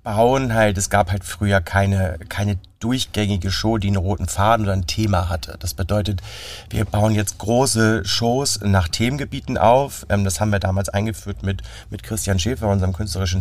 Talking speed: 180 wpm